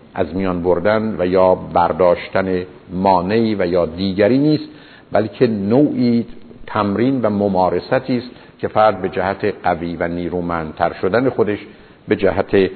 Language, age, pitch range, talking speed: Persian, 50-69, 95-125 Hz, 130 wpm